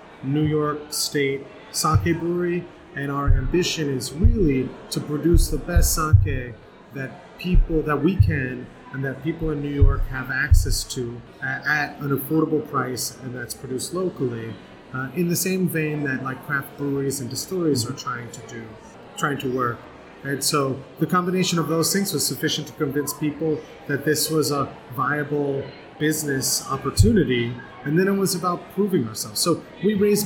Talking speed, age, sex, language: 170 wpm, 30-49, male, English